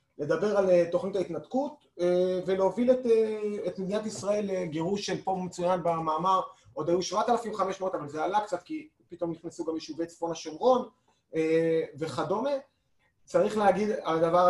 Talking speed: 135 wpm